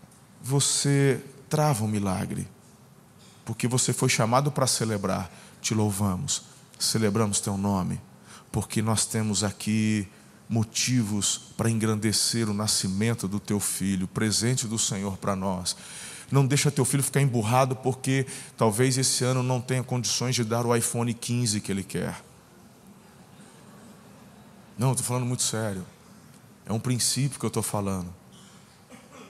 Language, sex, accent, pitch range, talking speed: Portuguese, male, Brazilian, 110-140 Hz, 135 wpm